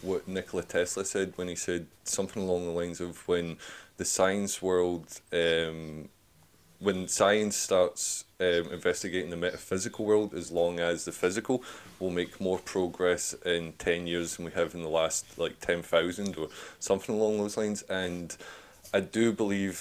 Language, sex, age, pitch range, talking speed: English, male, 20-39, 85-100 Hz, 165 wpm